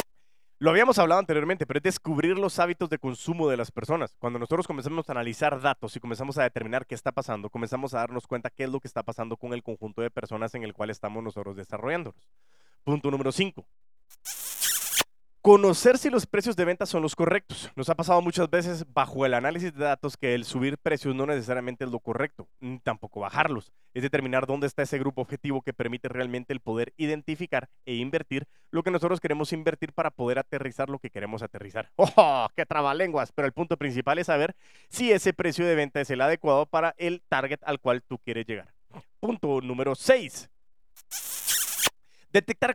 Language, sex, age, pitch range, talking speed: Spanish, male, 30-49, 130-175 Hz, 195 wpm